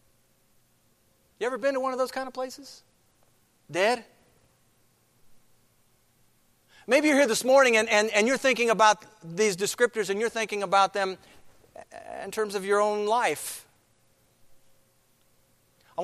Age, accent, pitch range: 50-69, American, 165-215 Hz